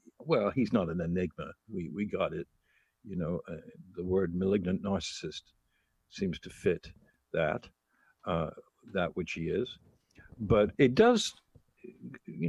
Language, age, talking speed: English, 60-79, 140 wpm